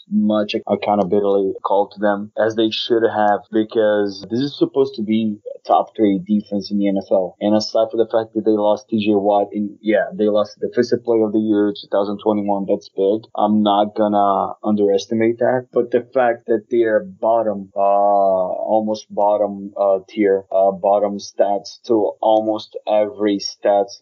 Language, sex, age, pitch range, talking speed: Portuguese, male, 20-39, 100-110 Hz, 170 wpm